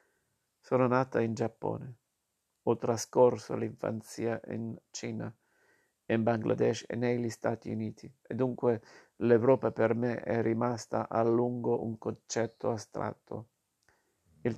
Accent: native